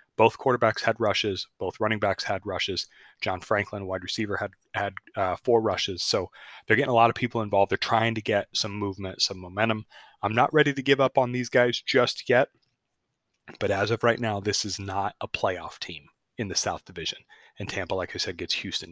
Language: English